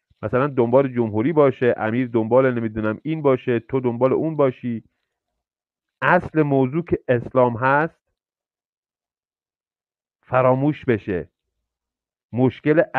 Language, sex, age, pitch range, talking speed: Persian, male, 40-59, 120-155 Hz, 95 wpm